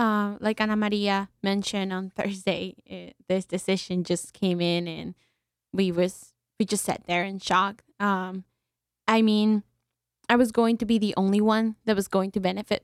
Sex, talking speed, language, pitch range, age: female, 180 wpm, English, 185-215 Hz, 10-29